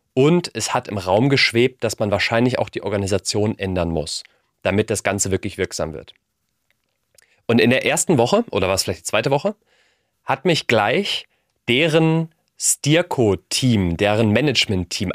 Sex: male